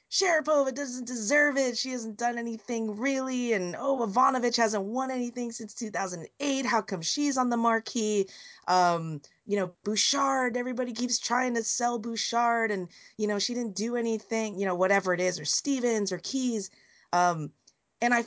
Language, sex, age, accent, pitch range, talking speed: English, female, 30-49, American, 155-240 Hz, 170 wpm